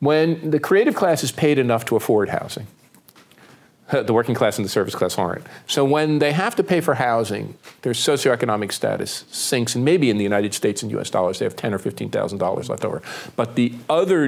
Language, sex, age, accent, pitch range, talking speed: Swedish, male, 50-69, American, 110-145 Hz, 205 wpm